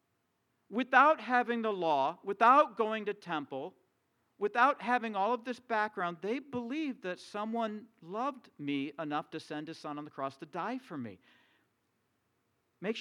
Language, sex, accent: English, male, American